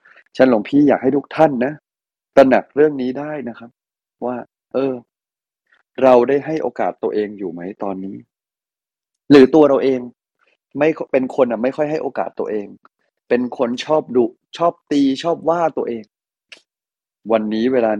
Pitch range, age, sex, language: 120-170 Hz, 30-49, male, Thai